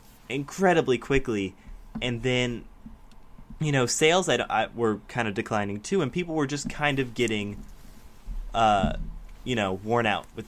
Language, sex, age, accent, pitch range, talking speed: English, male, 10-29, American, 100-130 Hz, 150 wpm